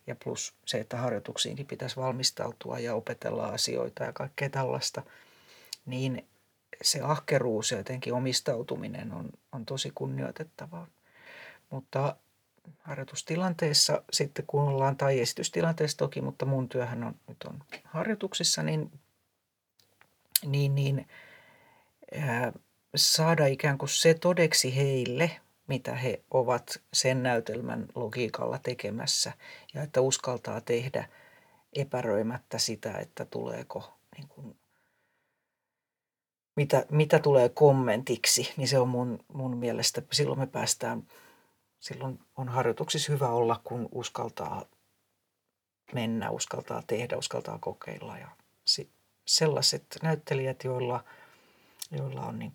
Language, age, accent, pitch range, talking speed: Finnish, 40-59, native, 120-150 Hz, 110 wpm